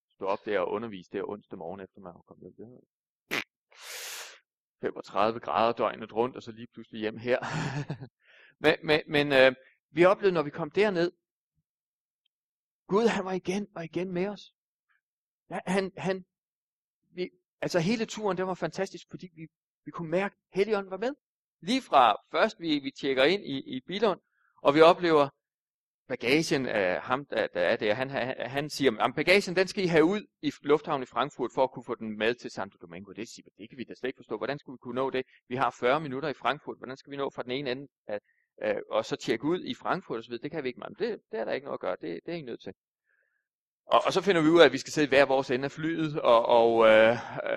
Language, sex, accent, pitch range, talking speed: Danish, male, native, 125-185 Hz, 220 wpm